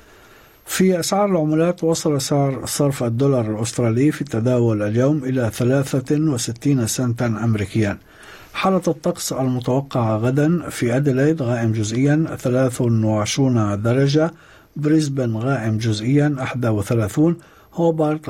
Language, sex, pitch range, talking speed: Arabic, male, 115-150 Hz, 110 wpm